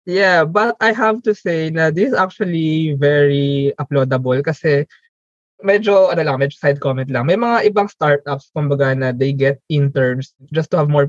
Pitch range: 140-175 Hz